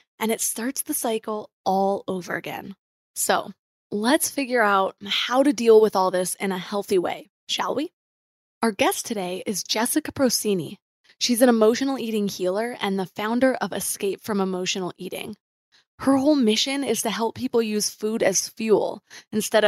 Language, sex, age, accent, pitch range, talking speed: English, female, 20-39, American, 200-245 Hz, 170 wpm